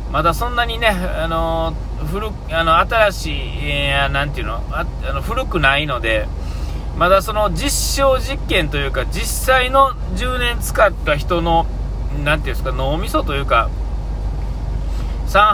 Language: Japanese